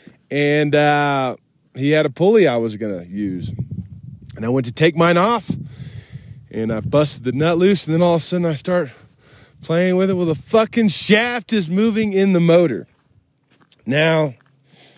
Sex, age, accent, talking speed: male, 20-39, American, 180 wpm